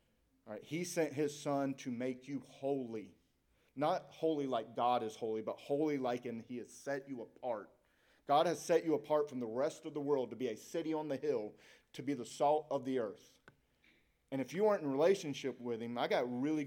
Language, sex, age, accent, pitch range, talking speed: English, male, 40-59, American, 120-150 Hz, 220 wpm